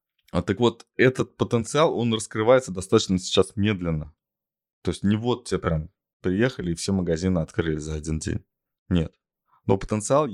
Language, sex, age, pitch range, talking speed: Russian, male, 20-39, 90-120 Hz, 150 wpm